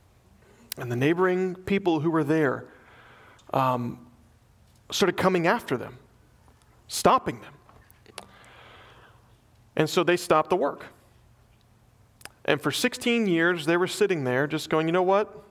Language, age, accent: English, 40-59, American